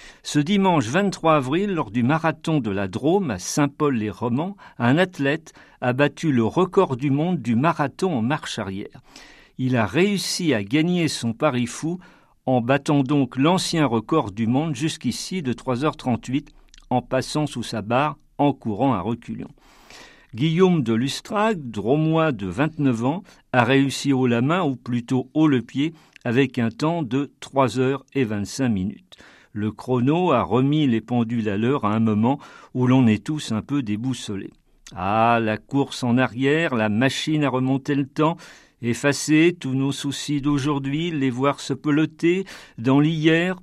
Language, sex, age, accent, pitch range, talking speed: French, male, 50-69, French, 125-155 Hz, 160 wpm